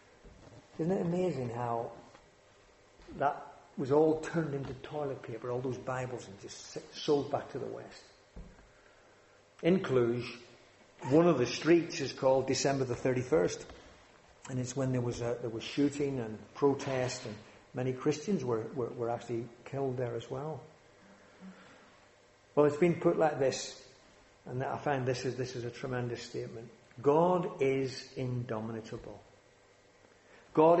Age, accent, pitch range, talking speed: 50-69, British, 120-165 Hz, 145 wpm